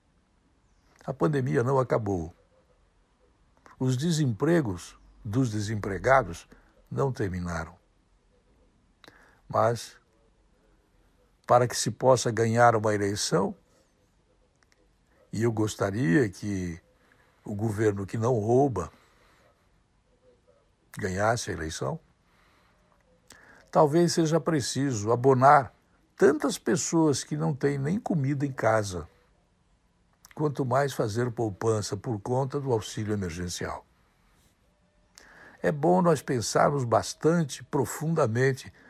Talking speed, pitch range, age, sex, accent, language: 90 wpm, 100-145 Hz, 60-79, male, Brazilian, Portuguese